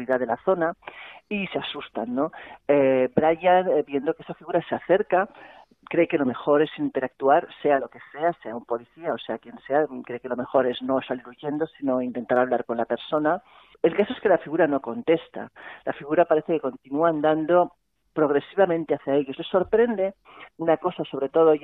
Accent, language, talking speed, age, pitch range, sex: Spanish, Spanish, 190 wpm, 40-59, 130-165 Hz, male